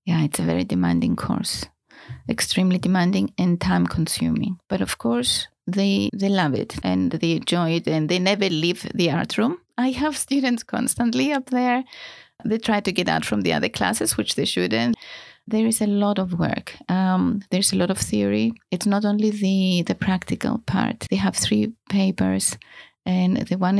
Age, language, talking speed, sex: 30-49, English, 180 wpm, female